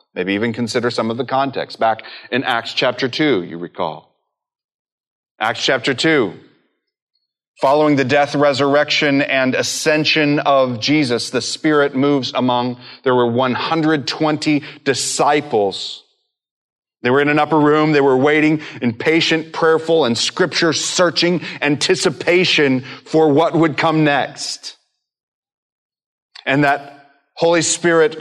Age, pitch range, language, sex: 30-49, 130-160 Hz, English, male